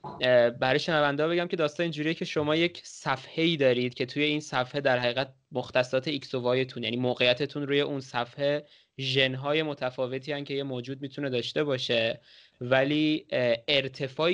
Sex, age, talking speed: male, 20-39, 155 wpm